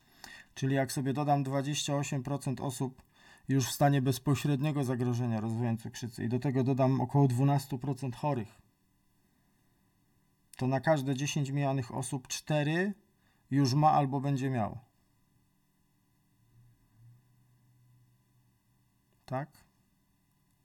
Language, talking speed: Polish, 95 wpm